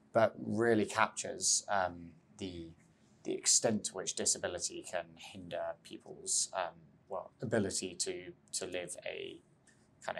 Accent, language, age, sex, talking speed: British, English, 20-39, male, 120 wpm